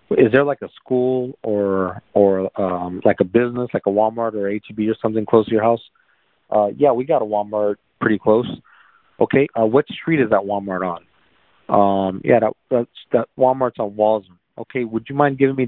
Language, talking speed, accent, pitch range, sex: English, 205 wpm, American, 100-120 Hz, male